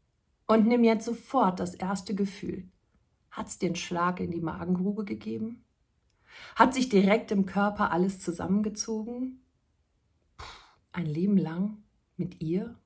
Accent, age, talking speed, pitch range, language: German, 40-59, 125 wpm, 180-230 Hz, German